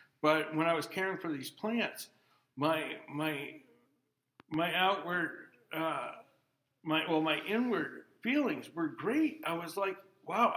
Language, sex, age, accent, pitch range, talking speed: English, male, 60-79, American, 150-195 Hz, 135 wpm